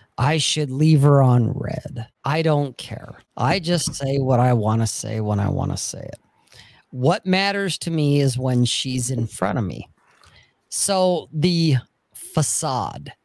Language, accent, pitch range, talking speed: English, American, 120-170 Hz, 170 wpm